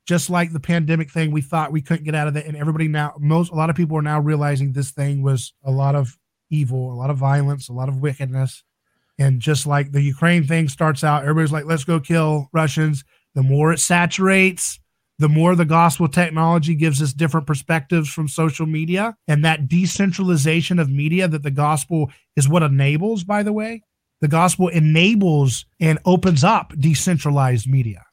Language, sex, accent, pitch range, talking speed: English, male, American, 140-170 Hz, 195 wpm